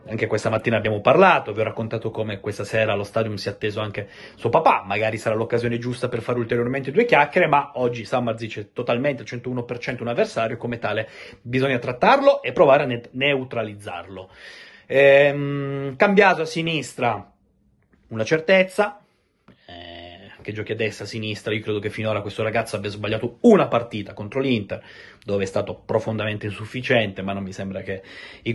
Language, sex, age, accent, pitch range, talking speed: Italian, male, 30-49, native, 110-150 Hz, 170 wpm